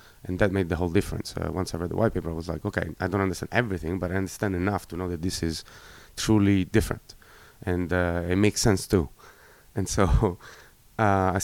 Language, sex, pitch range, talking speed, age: English, male, 90-100 Hz, 220 wpm, 30-49